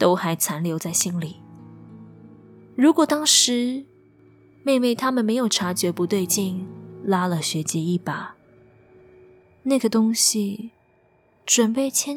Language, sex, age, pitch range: Chinese, female, 20-39, 185-230 Hz